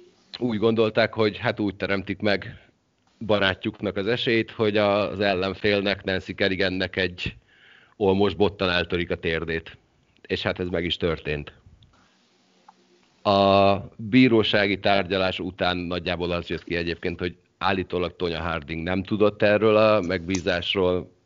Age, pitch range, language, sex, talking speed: 40-59, 85-100 Hz, Hungarian, male, 125 wpm